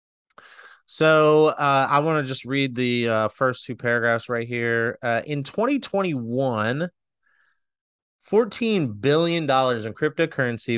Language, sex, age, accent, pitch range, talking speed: English, male, 30-49, American, 115-145 Hz, 115 wpm